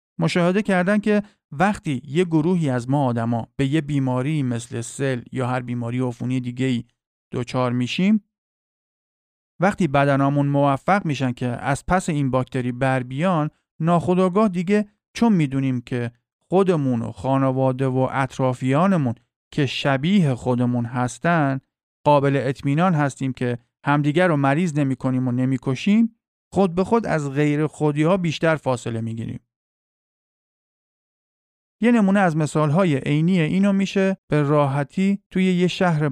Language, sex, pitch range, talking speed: Persian, male, 130-180 Hz, 130 wpm